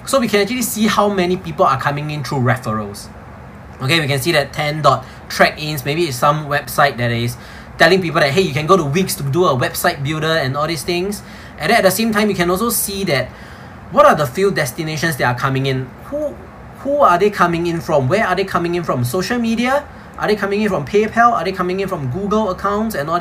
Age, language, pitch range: 20-39, English, 140-200 Hz